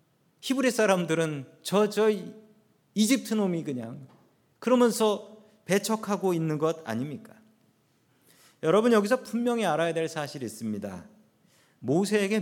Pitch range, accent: 150-210 Hz, native